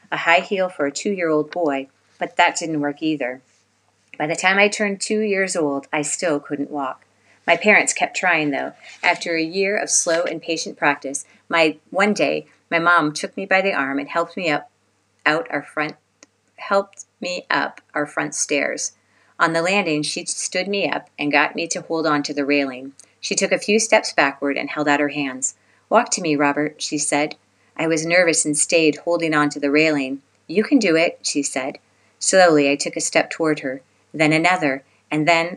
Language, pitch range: English, 140-170 Hz